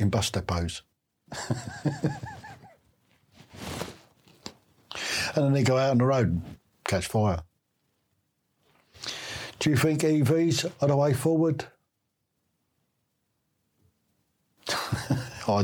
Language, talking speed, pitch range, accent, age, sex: English, 90 wpm, 110-140 Hz, British, 60-79, male